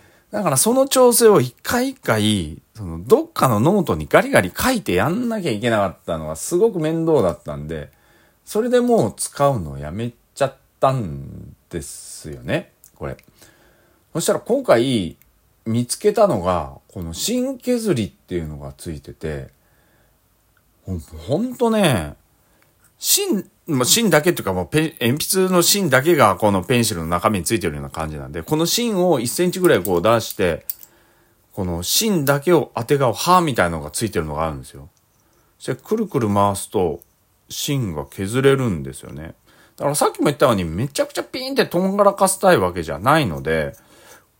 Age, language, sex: 40-59, Japanese, male